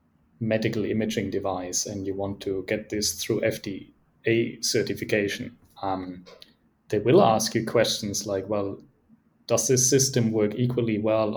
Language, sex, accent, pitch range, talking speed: English, male, German, 100-115 Hz, 135 wpm